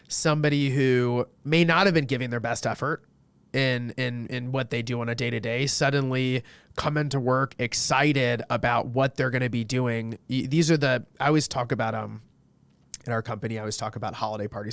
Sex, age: male, 30-49